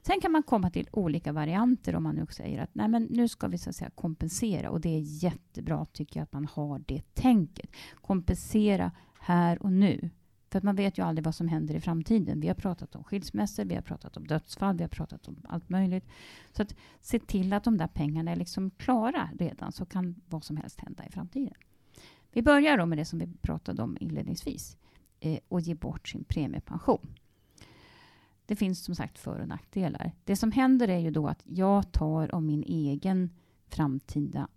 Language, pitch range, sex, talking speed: Swedish, 155-210 Hz, female, 205 wpm